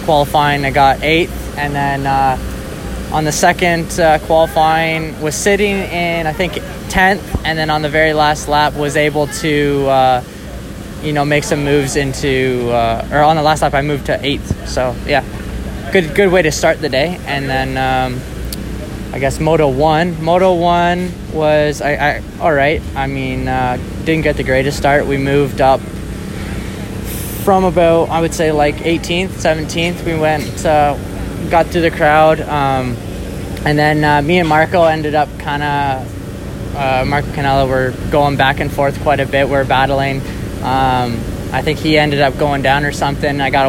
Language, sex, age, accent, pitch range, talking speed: English, male, 20-39, American, 130-155 Hz, 180 wpm